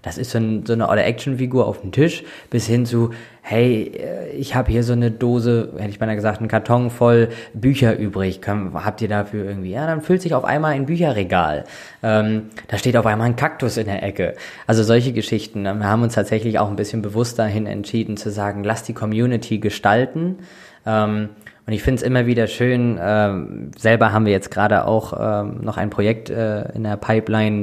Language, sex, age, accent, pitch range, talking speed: German, male, 20-39, German, 100-115 Hz, 195 wpm